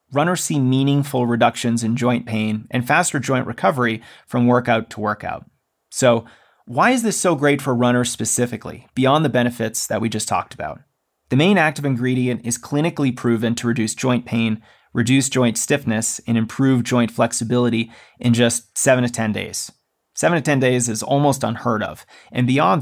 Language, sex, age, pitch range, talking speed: English, male, 30-49, 115-135 Hz, 175 wpm